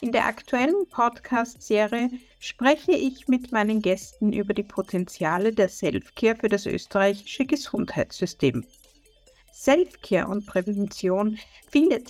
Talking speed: 110 wpm